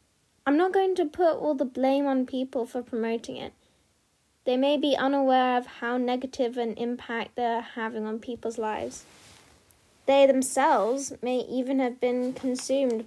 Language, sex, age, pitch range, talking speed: English, female, 10-29, 245-275 Hz, 155 wpm